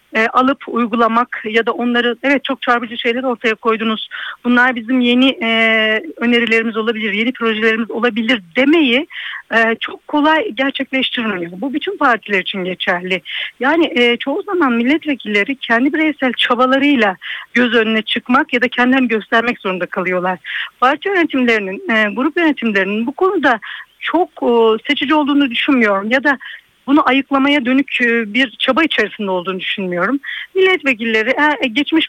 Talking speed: 135 wpm